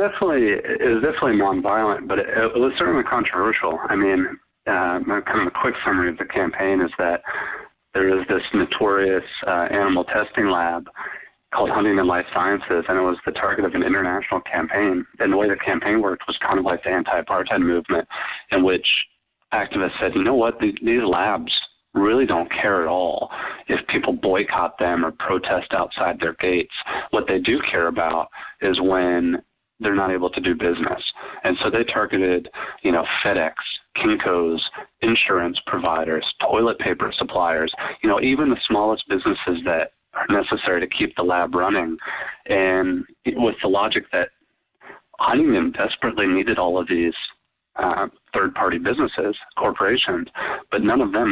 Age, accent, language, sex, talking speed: 30-49, American, English, male, 165 wpm